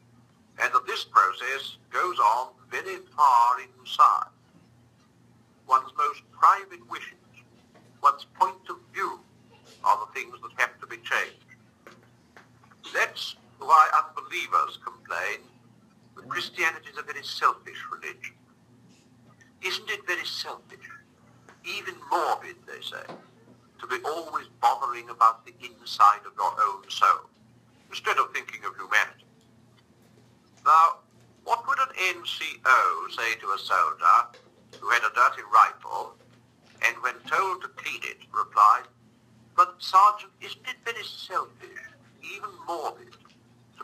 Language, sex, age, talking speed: English, male, 60-79, 125 wpm